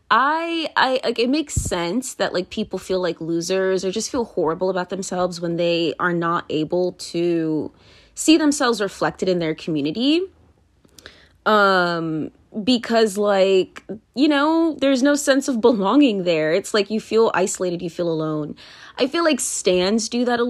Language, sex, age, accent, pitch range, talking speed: English, female, 20-39, American, 175-255 Hz, 165 wpm